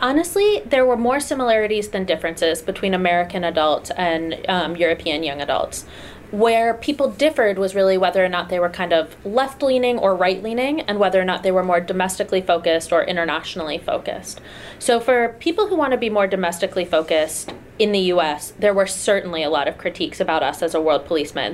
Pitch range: 170-225 Hz